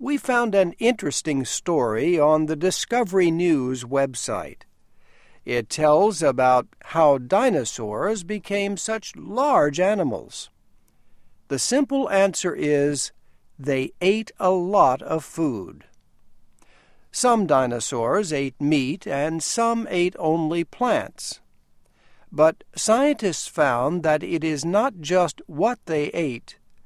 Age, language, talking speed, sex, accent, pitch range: 60-79, English, 110 wpm, male, American, 140-200 Hz